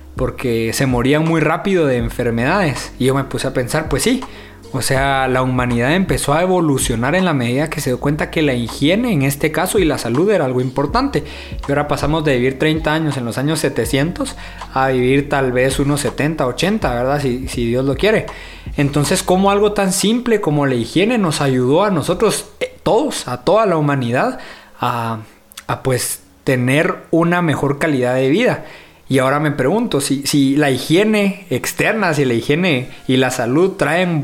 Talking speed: 190 wpm